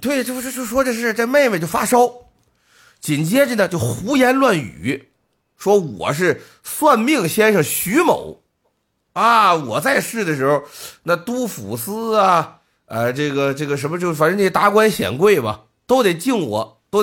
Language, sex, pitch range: Chinese, male, 150-225 Hz